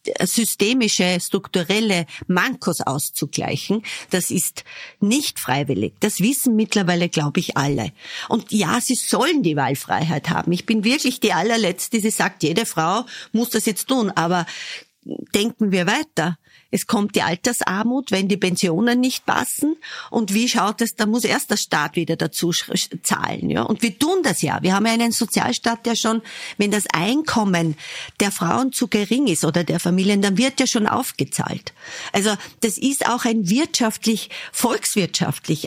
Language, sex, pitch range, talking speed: German, female, 180-240 Hz, 160 wpm